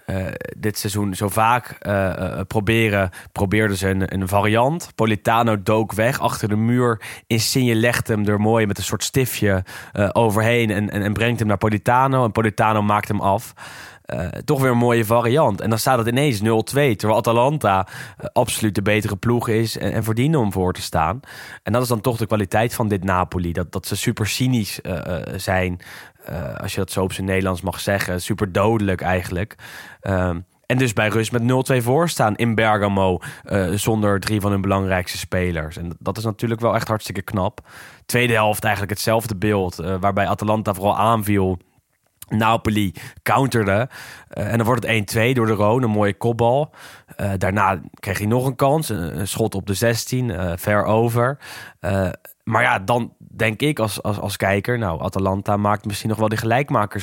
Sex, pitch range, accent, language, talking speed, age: male, 100-120 Hz, Dutch, English, 190 wpm, 20-39